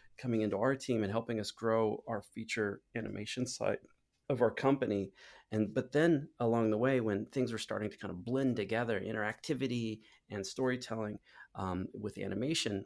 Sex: male